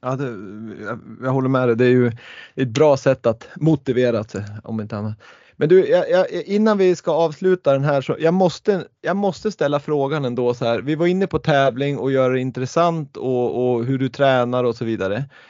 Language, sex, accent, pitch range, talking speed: Swedish, male, native, 120-160 Hz, 220 wpm